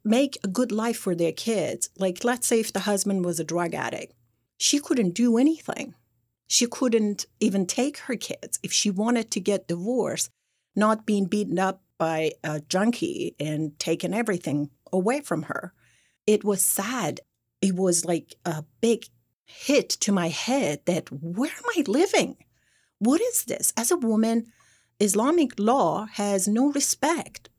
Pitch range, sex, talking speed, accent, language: 165-235 Hz, female, 160 wpm, American, English